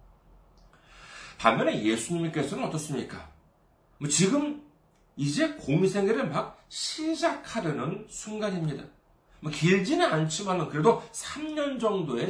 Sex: male